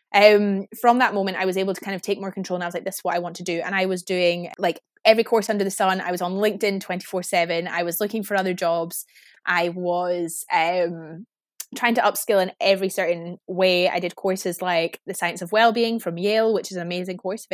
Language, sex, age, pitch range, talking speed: English, female, 20-39, 175-210 Hz, 245 wpm